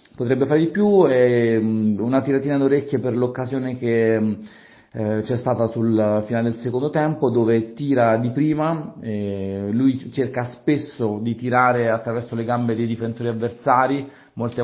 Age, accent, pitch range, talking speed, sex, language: 40-59, native, 110-125 Hz, 150 wpm, male, Italian